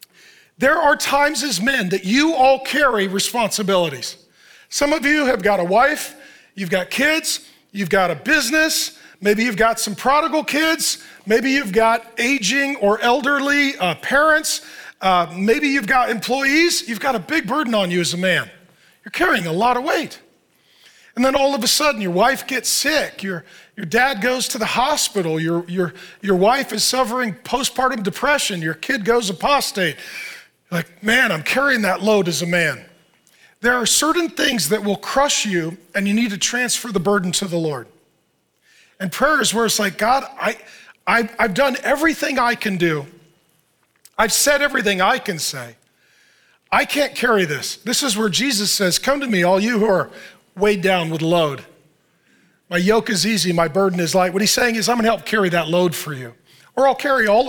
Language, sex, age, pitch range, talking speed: English, male, 40-59, 185-270 Hz, 185 wpm